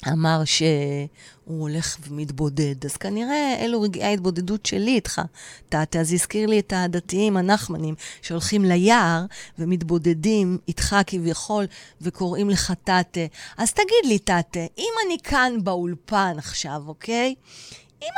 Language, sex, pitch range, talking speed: Hebrew, female, 165-235 Hz, 120 wpm